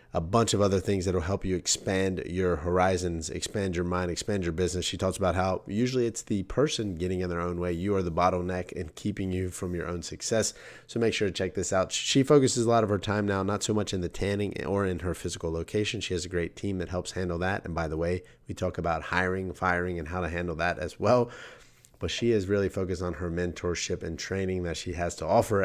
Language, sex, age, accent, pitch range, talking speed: English, male, 30-49, American, 90-105 Hz, 255 wpm